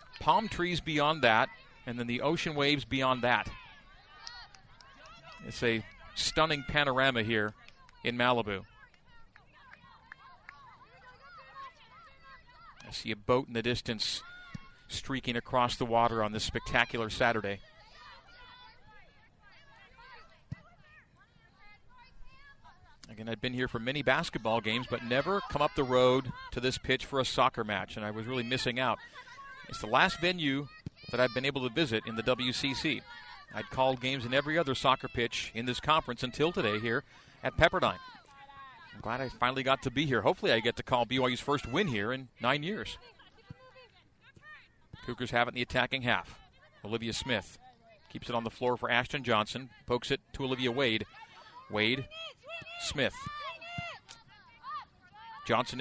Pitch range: 120-145 Hz